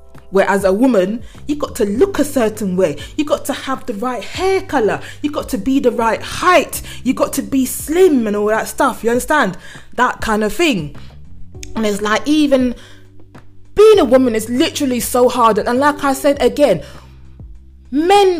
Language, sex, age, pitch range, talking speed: English, female, 20-39, 195-255 Hz, 190 wpm